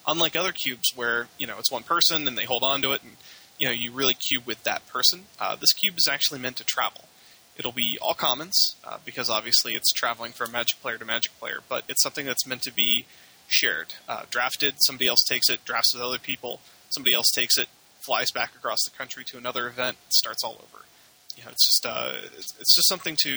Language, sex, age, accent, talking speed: English, male, 20-39, American, 230 wpm